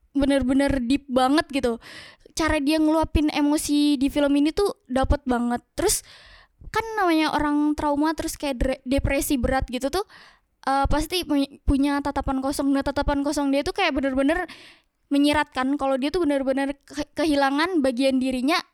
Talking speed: 140 wpm